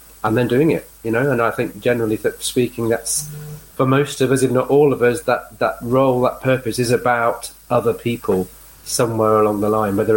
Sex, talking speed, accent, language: male, 205 wpm, British, English